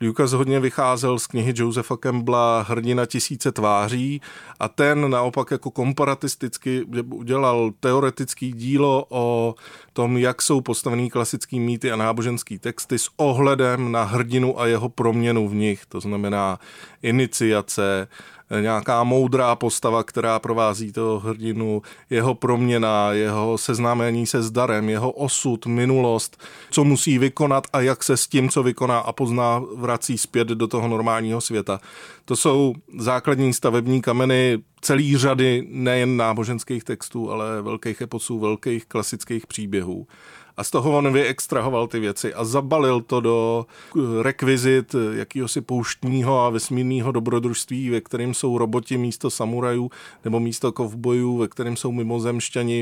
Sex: male